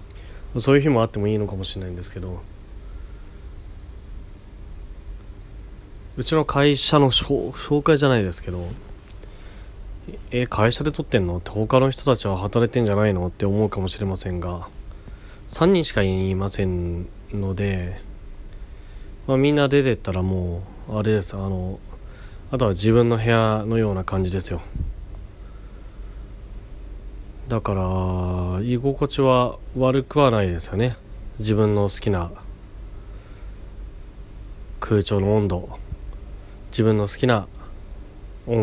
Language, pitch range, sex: Japanese, 95-110 Hz, male